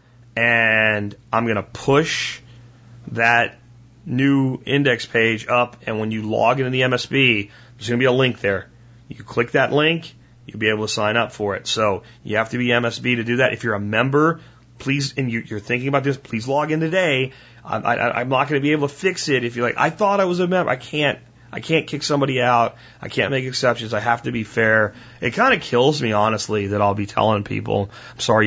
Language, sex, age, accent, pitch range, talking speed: English, male, 30-49, American, 110-130 Hz, 225 wpm